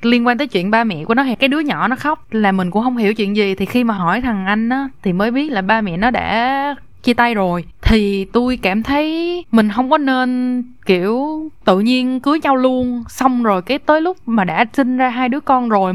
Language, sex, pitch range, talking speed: Vietnamese, female, 205-260 Hz, 245 wpm